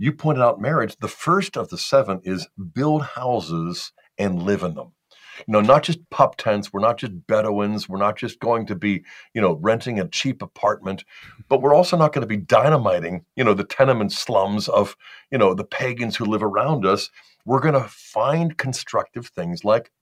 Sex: male